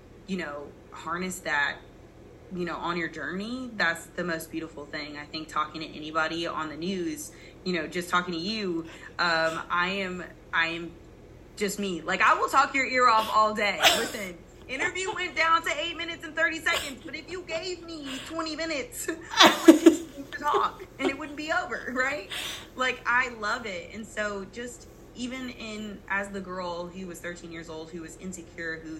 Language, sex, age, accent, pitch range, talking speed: English, female, 20-39, American, 160-220 Hz, 190 wpm